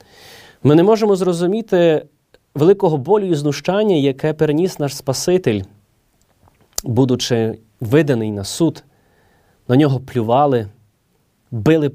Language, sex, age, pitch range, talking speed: Ukrainian, male, 30-49, 125-170 Hz, 100 wpm